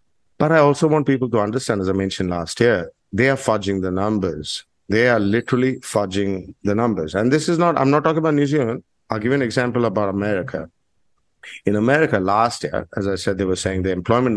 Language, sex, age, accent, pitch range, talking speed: English, male, 50-69, Indian, 95-120 Hz, 215 wpm